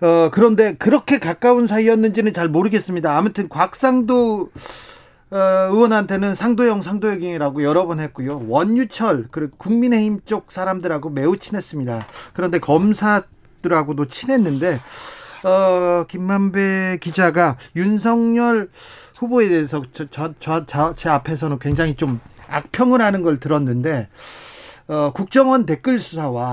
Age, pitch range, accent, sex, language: 40-59, 150-210 Hz, native, male, Korean